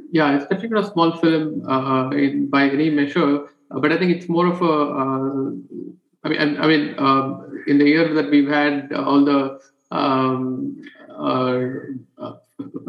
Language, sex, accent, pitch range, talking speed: English, male, Indian, 135-155 Hz, 170 wpm